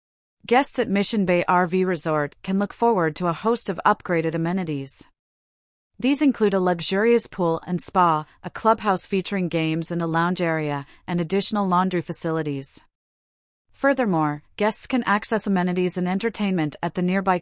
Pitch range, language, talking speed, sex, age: 165-205 Hz, English, 150 wpm, female, 40-59